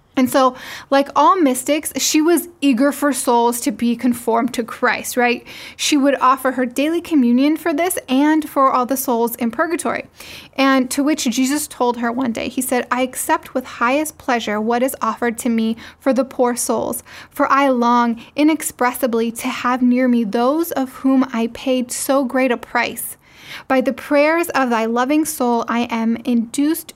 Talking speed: 185 wpm